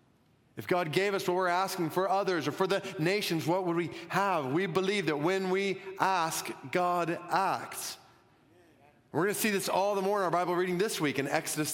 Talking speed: 210 wpm